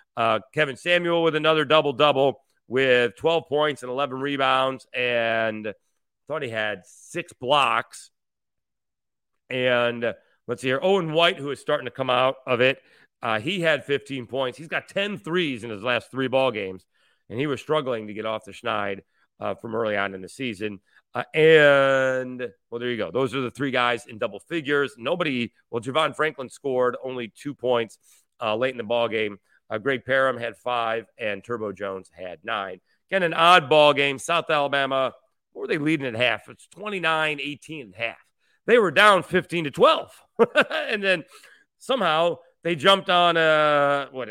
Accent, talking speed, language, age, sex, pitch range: American, 175 wpm, English, 40-59, male, 120-155 Hz